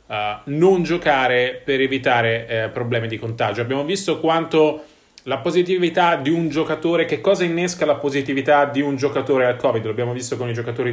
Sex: male